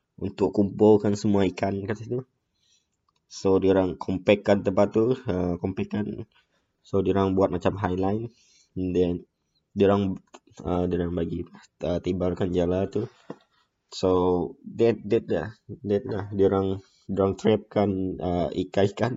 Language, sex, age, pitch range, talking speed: Malay, male, 20-39, 90-105 Hz, 130 wpm